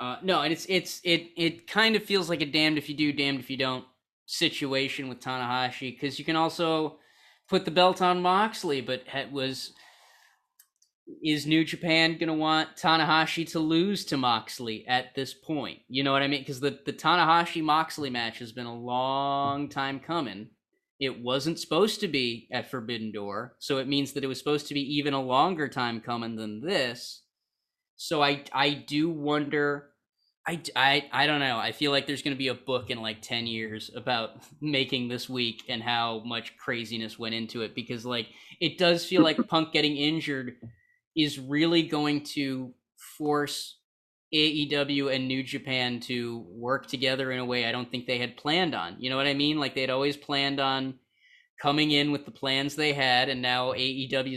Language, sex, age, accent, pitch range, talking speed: English, male, 20-39, American, 125-155 Hz, 190 wpm